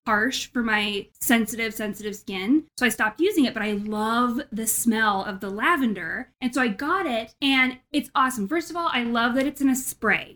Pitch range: 215-260 Hz